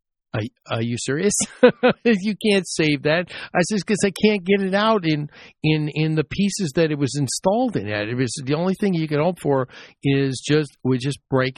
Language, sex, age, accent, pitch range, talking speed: English, male, 50-69, American, 120-145 Hz, 210 wpm